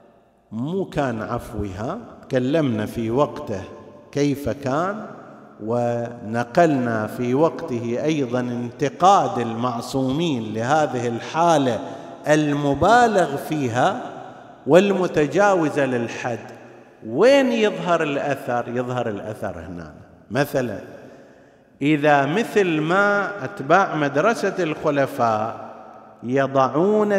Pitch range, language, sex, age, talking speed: 120-150 Hz, Arabic, male, 50-69, 75 wpm